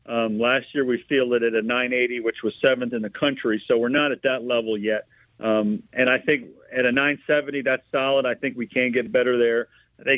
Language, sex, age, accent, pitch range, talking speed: English, male, 50-69, American, 115-130 Hz, 230 wpm